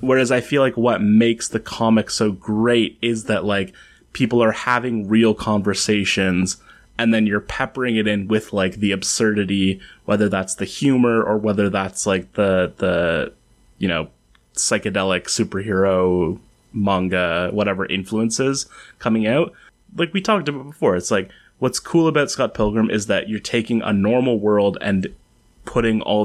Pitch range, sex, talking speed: 100-115 Hz, male, 160 wpm